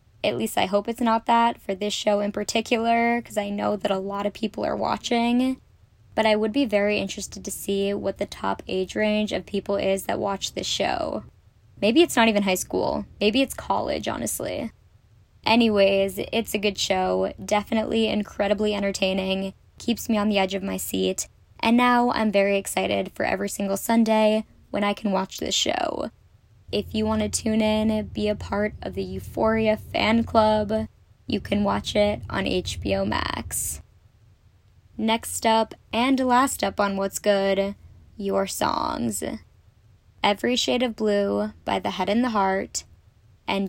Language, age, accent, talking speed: English, 10-29, American, 170 wpm